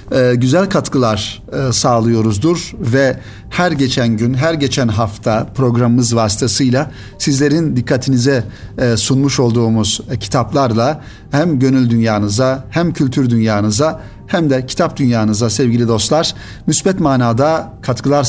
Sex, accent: male, native